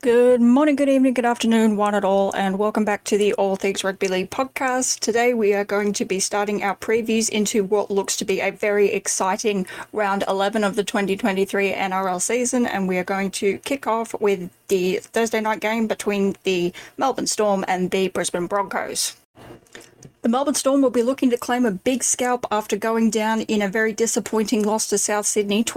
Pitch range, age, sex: 195-225 Hz, 10-29, female